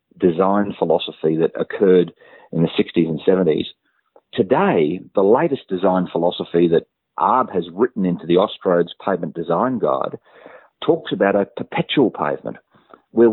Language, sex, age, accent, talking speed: English, male, 40-59, Australian, 135 wpm